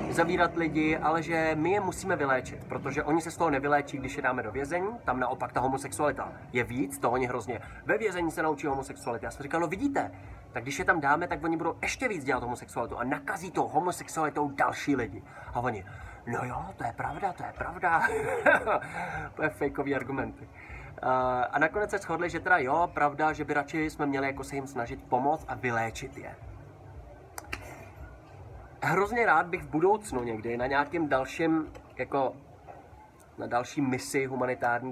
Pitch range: 125-155 Hz